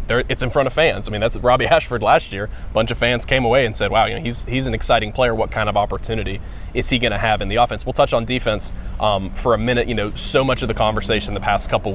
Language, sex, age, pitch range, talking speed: English, male, 20-39, 105-120 Hz, 295 wpm